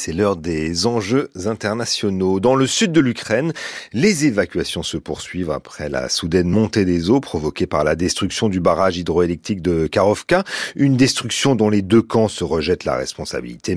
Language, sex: French, male